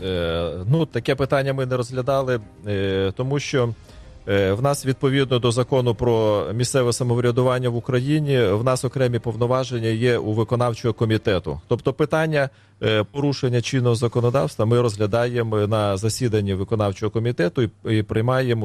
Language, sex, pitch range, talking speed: Ukrainian, male, 105-130 Hz, 140 wpm